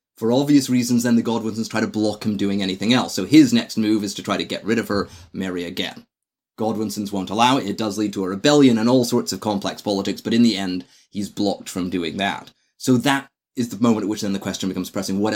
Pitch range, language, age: 100-130 Hz, English, 30-49